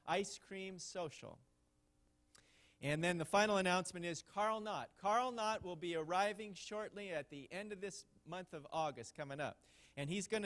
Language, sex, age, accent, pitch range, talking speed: English, male, 40-59, American, 135-195 Hz, 170 wpm